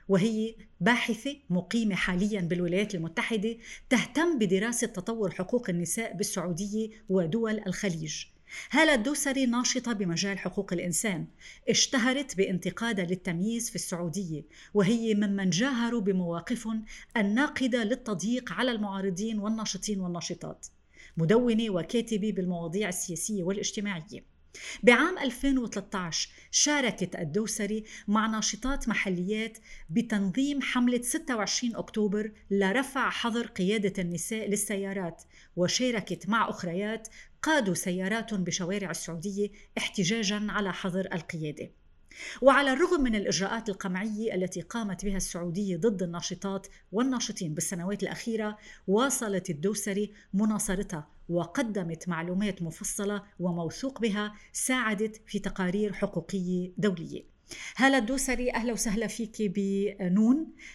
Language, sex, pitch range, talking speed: Arabic, female, 190-230 Hz, 100 wpm